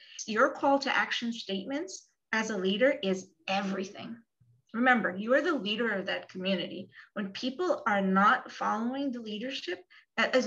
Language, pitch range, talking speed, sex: English, 200-270 Hz, 150 wpm, female